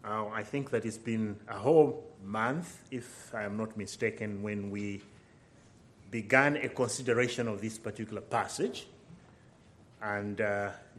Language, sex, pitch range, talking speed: English, male, 110-135 Hz, 130 wpm